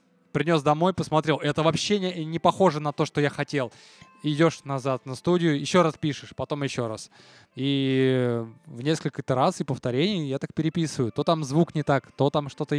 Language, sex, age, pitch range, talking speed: Russian, male, 20-39, 135-170 Hz, 190 wpm